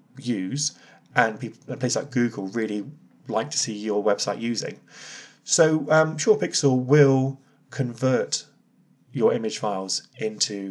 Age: 30-49